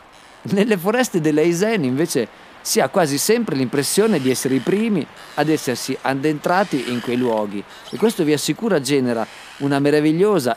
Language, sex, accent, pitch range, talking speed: Italian, male, native, 125-180 Hz, 150 wpm